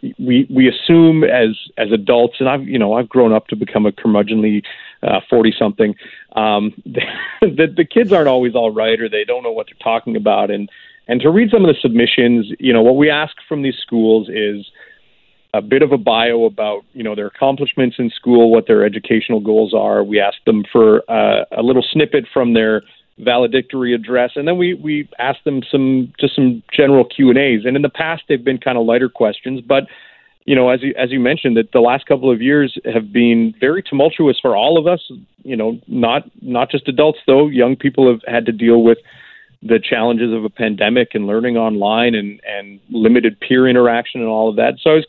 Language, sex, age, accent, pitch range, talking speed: English, male, 40-59, American, 115-140 Hz, 215 wpm